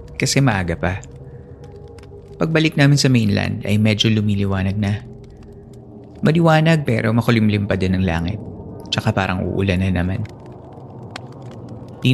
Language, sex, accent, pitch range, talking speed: Filipino, male, native, 100-120 Hz, 120 wpm